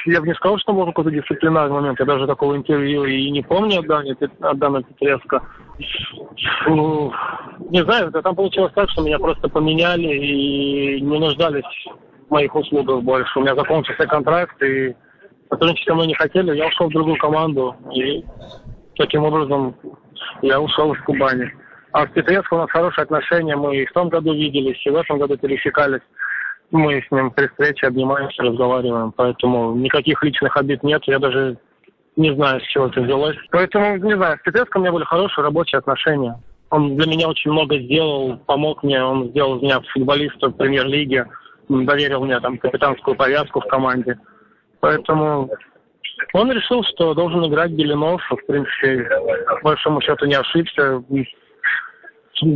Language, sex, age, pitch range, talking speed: Russian, male, 20-39, 135-160 Hz, 160 wpm